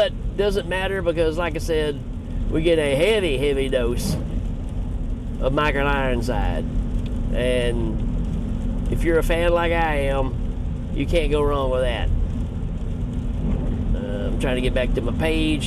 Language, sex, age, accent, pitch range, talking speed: English, male, 40-59, American, 90-150 Hz, 145 wpm